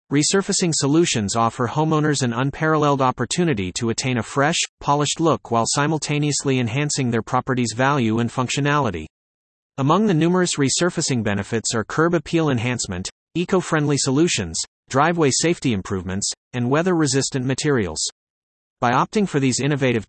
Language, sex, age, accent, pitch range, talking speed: English, male, 40-59, American, 115-155 Hz, 130 wpm